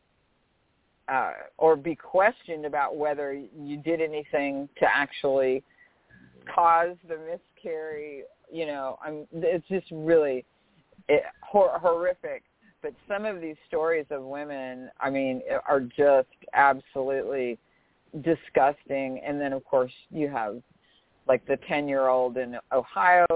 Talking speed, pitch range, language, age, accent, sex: 115 wpm, 135-185 Hz, English, 50-69, American, female